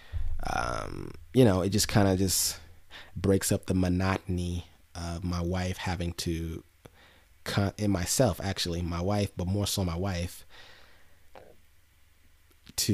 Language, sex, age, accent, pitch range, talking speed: English, male, 30-49, American, 85-100 Hz, 135 wpm